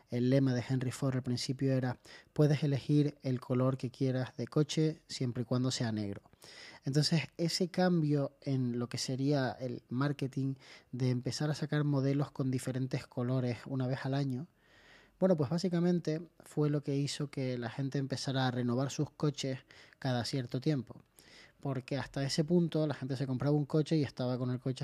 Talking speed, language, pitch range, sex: 180 wpm, Spanish, 125-145 Hz, male